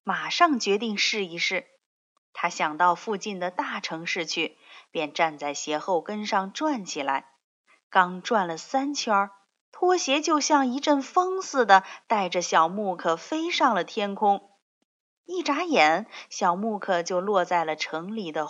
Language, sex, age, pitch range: Chinese, female, 20-39, 170-270 Hz